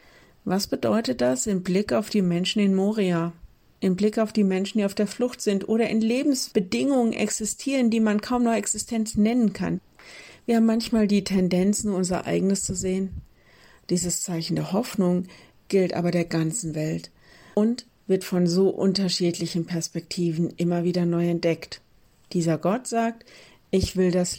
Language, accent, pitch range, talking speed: German, German, 170-200 Hz, 160 wpm